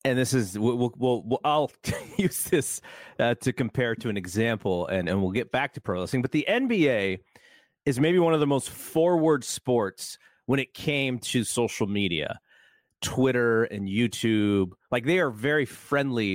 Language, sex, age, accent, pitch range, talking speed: English, male, 30-49, American, 110-145 Hz, 175 wpm